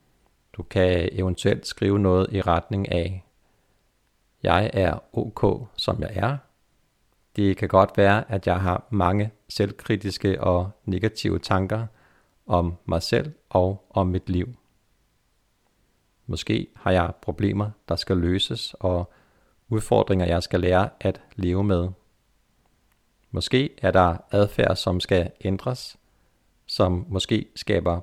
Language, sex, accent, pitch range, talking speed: Danish, male, native, 95-110 Hz, 125 wpm